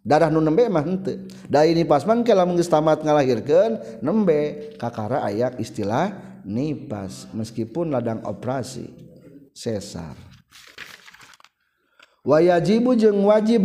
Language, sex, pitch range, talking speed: Indonesian, male, 125-200 Hz, 90 wpm